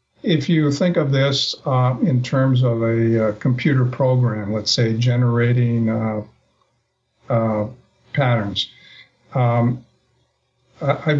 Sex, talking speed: male, 115 wpm